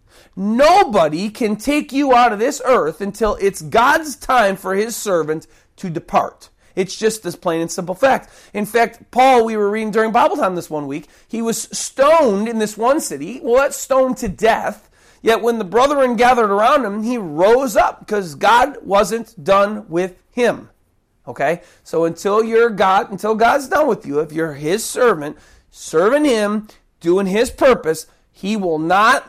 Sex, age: male, 40-59